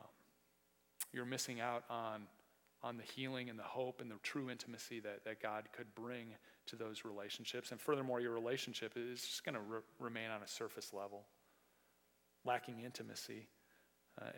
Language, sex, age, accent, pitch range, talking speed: English, male, 30-49, American, 100-130 Hz, 165 wpm